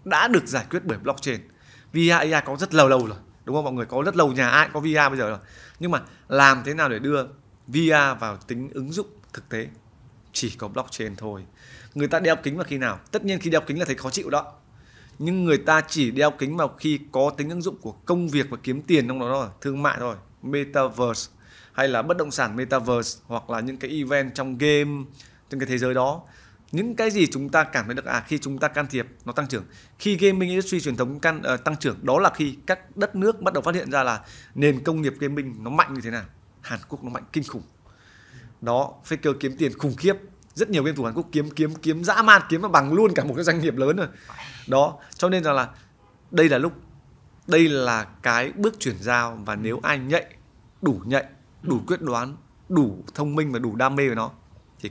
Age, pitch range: 20-39, 120-155 Hz